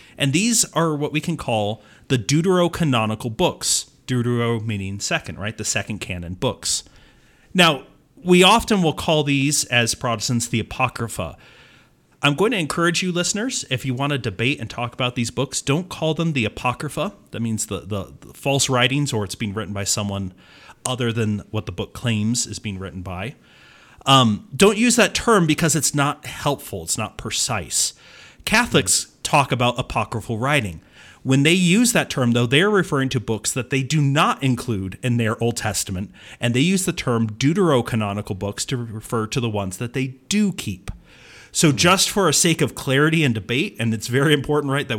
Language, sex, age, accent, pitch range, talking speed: English, male, 40-59, American, 110-145 Hz, 185 wpm